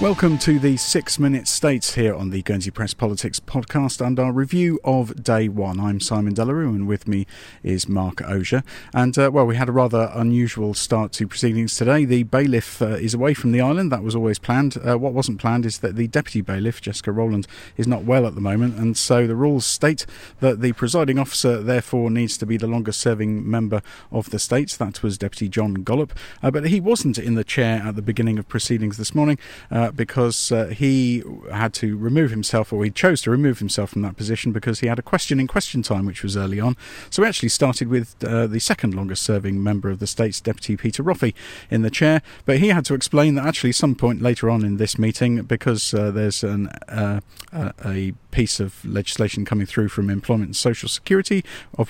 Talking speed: 215 wpm